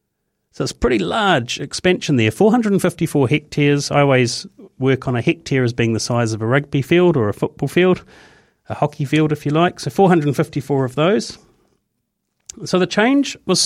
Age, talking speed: 40-59, 175 wpm